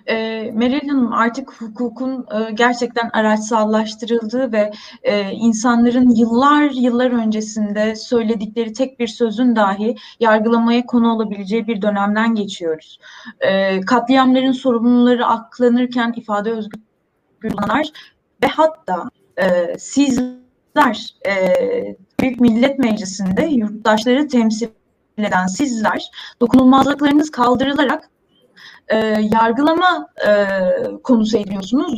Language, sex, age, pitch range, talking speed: Turkish, female, 20-39, 220-265 Hz, 95 wpm